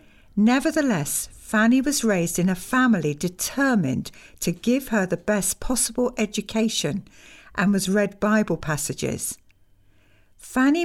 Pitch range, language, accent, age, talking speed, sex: 165-245 Hz, English, British, 60-79, 115 wpm, female